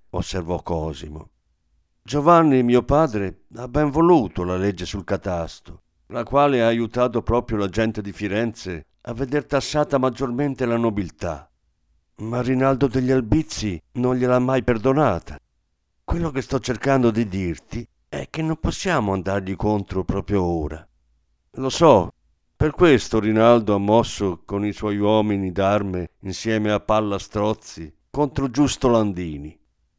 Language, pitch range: Italian, 90-130 Hz